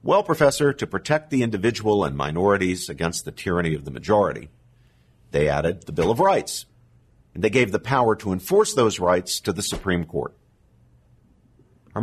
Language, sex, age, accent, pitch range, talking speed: English, male, 50-69, American, 85-120 Hz, 170 wpm